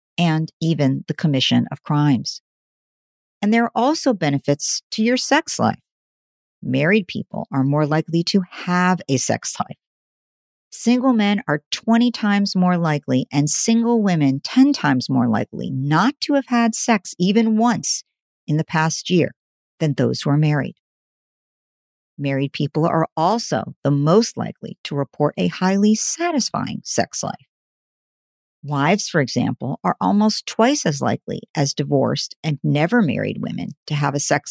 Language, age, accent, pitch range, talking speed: English, 50-69, American, 150-220 Hz, 150 wpm